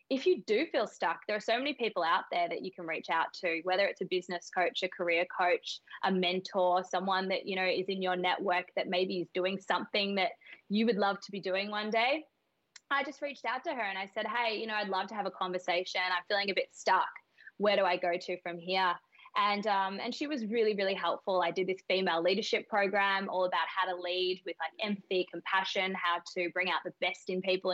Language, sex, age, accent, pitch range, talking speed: English, female, 20-39, Australian, 180-205 Hz, 240 wpm